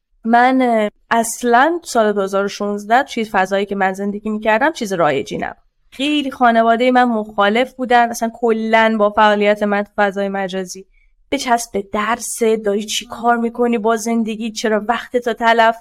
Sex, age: female, 20-39